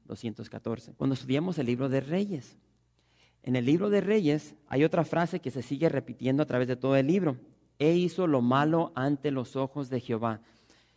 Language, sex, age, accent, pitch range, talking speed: English, male, 40-59, Mexican, 125-165 Hz, 185 wpm